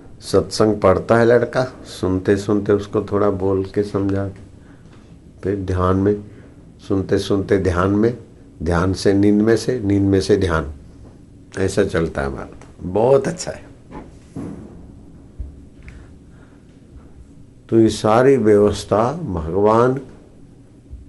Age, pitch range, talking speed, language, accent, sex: 60-79, 95-110 Hz, 105 wpm, Hindi, native, male